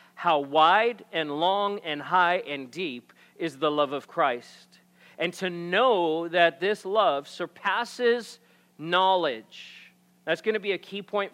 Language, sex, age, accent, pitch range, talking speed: English, male, 40-59, American, 155-210 Hz, 150 wpm